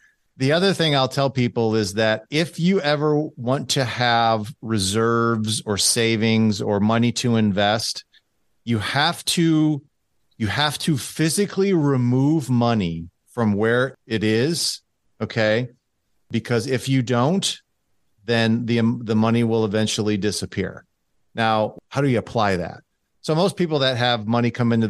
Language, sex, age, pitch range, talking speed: English, male, 50-69, 110-130 Hz, 145 wpm